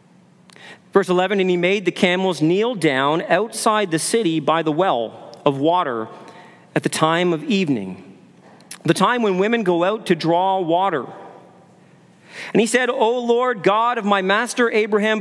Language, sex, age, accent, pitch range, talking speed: English, male, 40-59, American, 180-235 Hz, 160 wpm